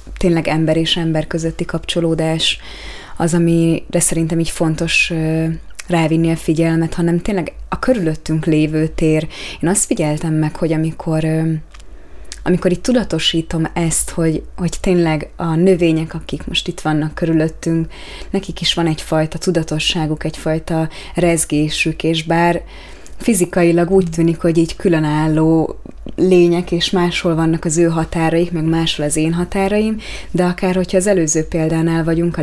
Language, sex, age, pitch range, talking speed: Hungarian, female, 20-39, 160-180 Hz, 140 wpm